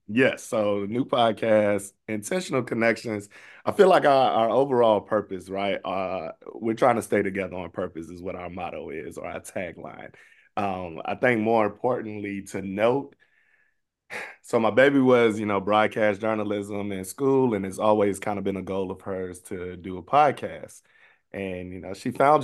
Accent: American